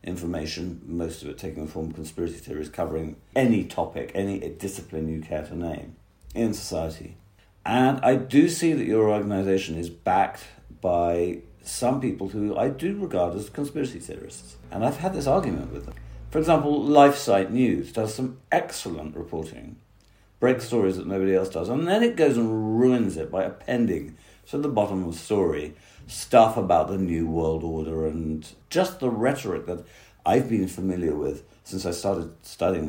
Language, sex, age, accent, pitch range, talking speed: English, male, 50-69, British, 80-115 Hz, 175 wpm